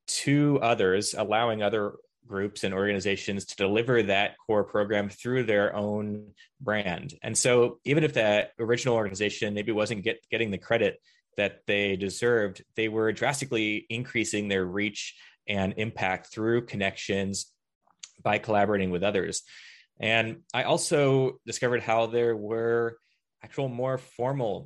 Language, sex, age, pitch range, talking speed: English, male, 20-39, 95-115 Hz, 135 wpm